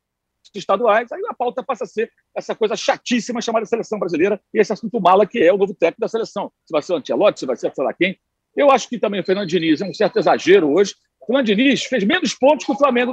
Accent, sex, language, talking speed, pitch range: Brazilian, male, Portuguese, 255 wpm, 205-285 Hz